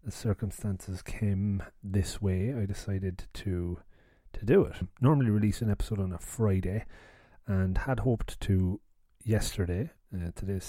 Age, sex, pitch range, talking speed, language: 30-49, male, 95-110 Hz, 140 wpm, English